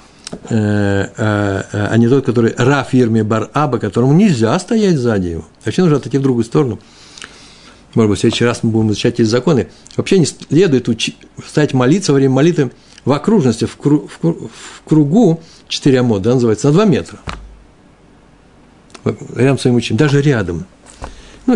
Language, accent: Russian, native